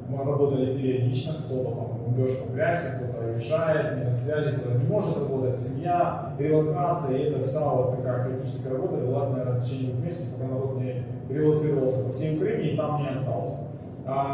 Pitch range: 125-140 Hz